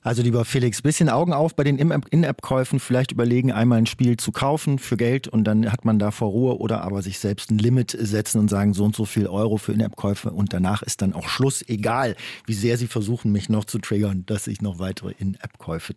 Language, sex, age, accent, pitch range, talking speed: German, male, 40-59, German, 110-145 Hz, 230 wpm